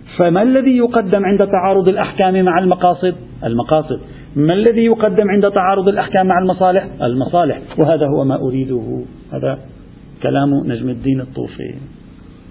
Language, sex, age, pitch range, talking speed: Arabic, male, 50-69, 140-180 Hz, 130 wpm